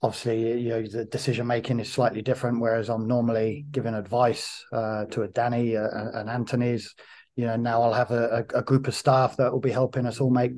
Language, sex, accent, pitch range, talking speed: English, male, British, 115-130 Hz, 215 wpm